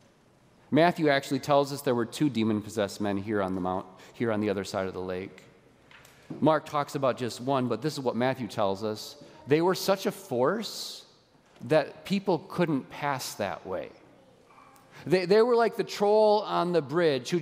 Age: 40-59